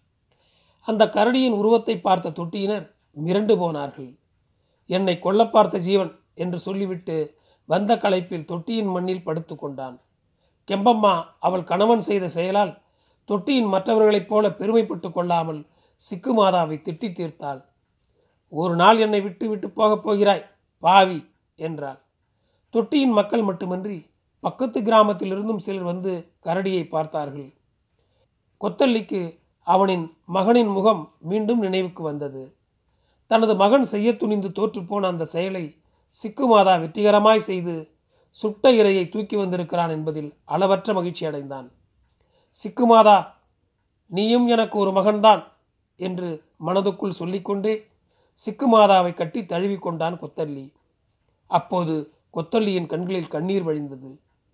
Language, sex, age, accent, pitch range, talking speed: Tamil, male, 40-59, native, 160-210 Hz, 100 wpm